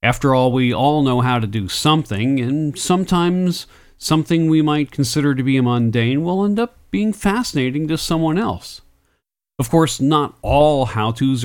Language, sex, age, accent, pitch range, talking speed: English, male, 40-59, American, 125-180 Hz, 165 wpm